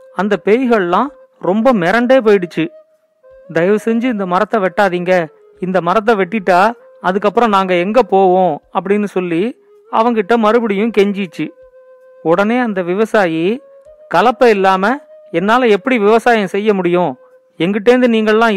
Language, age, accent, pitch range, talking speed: Tamil, 40-59, native, 185-250 Hz, 110 wpm